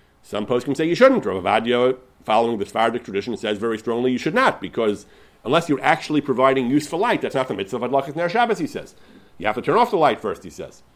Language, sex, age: English, male, 40-59